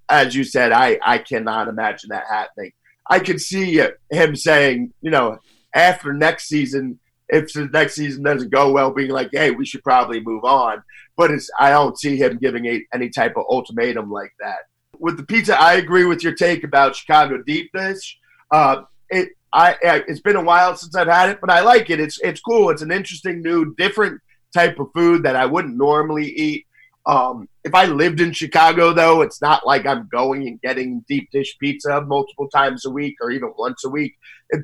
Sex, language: male, English